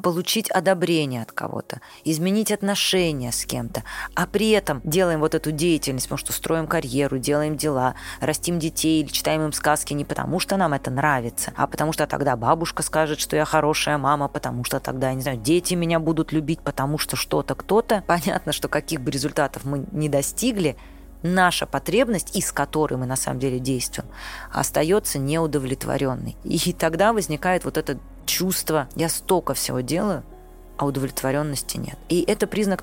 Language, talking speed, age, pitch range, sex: Russian, 165 wpm, 20-39, 140-175 Hz, female